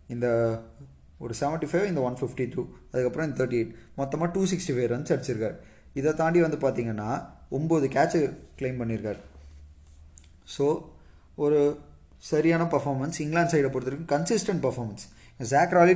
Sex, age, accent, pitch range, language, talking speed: male, 20-39, native, 115-155 Hz, Tamil, 140 wpm